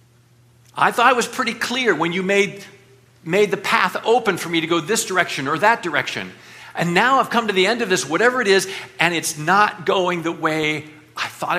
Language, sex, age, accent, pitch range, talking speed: English, male, 50-69, American, 120-190 Hz, 215 wpm